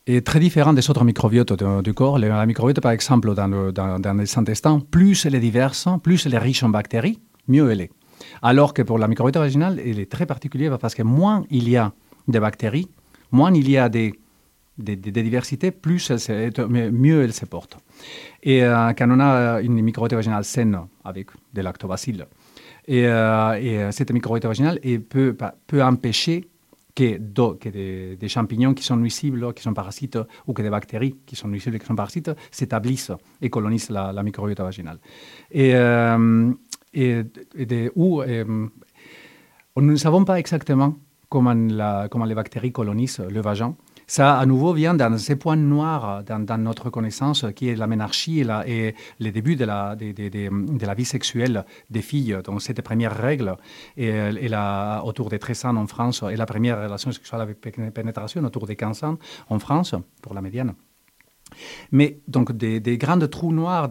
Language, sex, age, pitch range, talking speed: French, male, 40-59, 110-135 Hz, 190 wpm